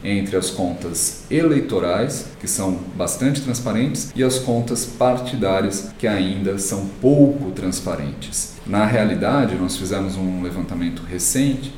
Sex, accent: male, Brazilian